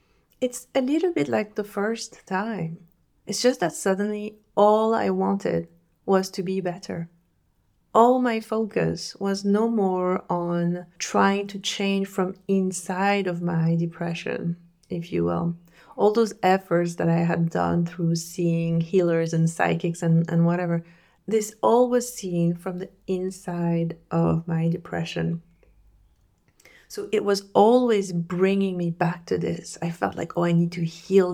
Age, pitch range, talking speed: 30-49, 170-205 Hz, 150 wpm